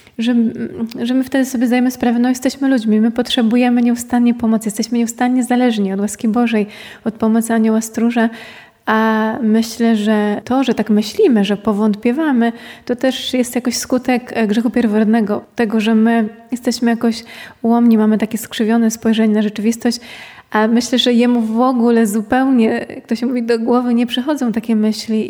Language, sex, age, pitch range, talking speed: Polish, female, 20-39, 220-245 Hz, 160 wpm